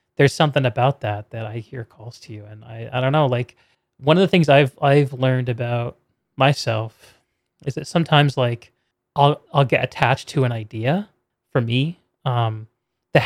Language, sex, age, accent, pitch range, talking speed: English, male, 30-49, American, 120-155 Hz, 180 wpm